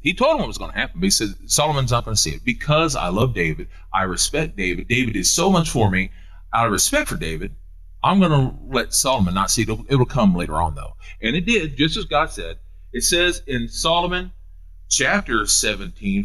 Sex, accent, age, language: male, American, 40-59, English